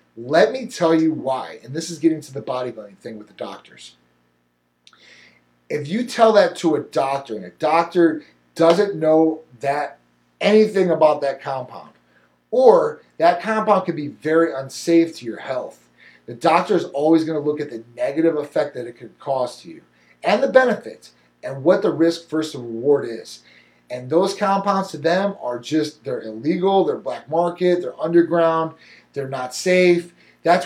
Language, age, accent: English, 30-49, American